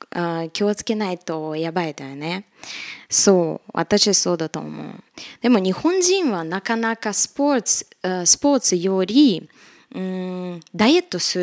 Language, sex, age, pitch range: Japanese, female, 20-39, 165-225 Hz